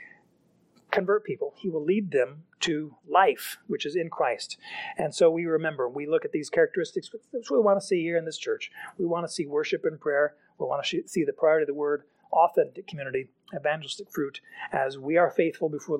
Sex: male